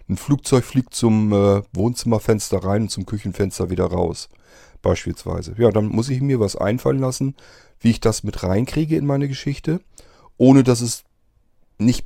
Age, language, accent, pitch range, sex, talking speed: 40-59, German, German, 95-115 Hz, male, 165 wpm